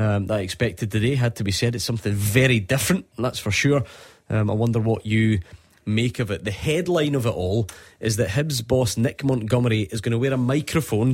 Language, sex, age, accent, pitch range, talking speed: English, male, 20-39, British, 105-125 Hz, 220 wpm